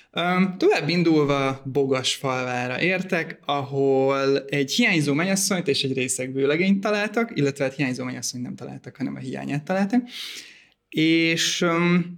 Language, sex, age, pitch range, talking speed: Hungarian, male, 20-39, 130-175 Hz, 125 wpm